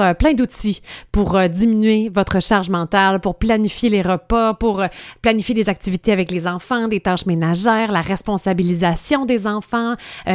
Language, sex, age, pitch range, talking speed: French, female, 30-49, 185-235 Hz, 150 wpm